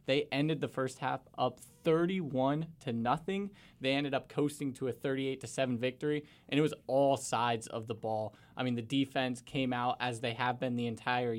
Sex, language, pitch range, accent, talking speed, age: male, English, 125-145 Hz, American, 205 wpm, 20-39